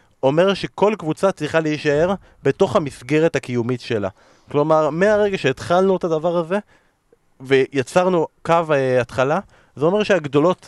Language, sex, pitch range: Hebrew, male, 140-190 Hz